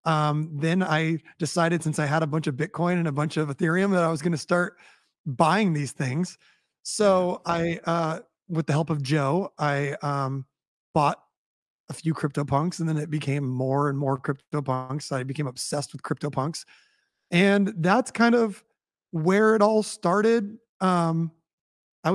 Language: English